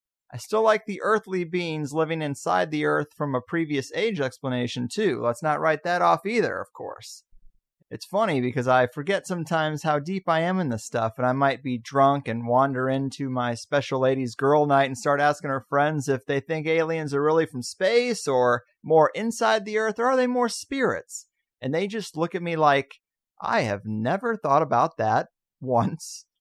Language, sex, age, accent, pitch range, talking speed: English, male, 30-49, American, 130-175 Hz, 200 wpm